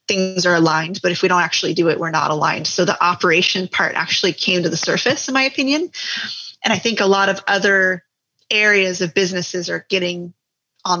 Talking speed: 205 wpm